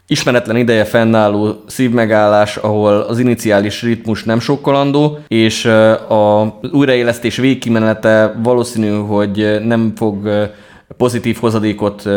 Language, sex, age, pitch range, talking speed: Hungarian, male, 20-39, 100-110 Hz, 100 wpm